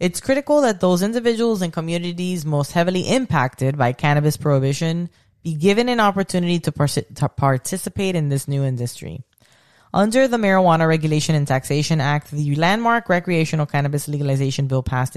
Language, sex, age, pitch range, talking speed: English, female, 20-39, 145-190 Hz, 155 wpm